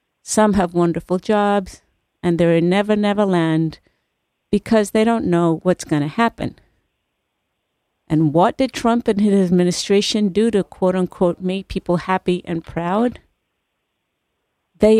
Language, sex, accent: English, female, American